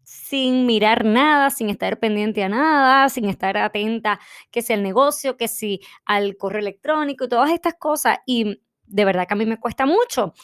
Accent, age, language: American, 20-39, Spanish